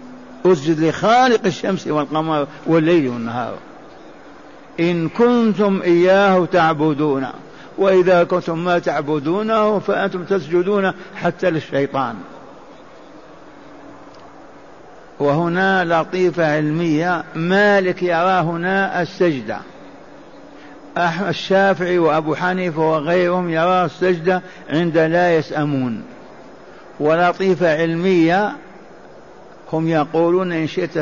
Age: 60-79